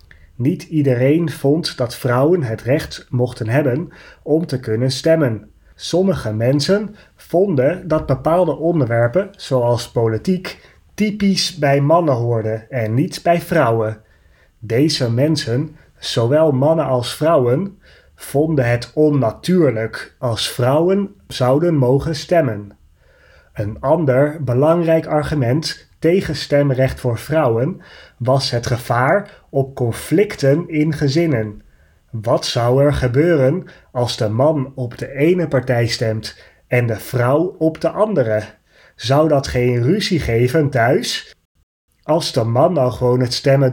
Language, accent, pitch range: Dutch, Dutch, 120-160 Hz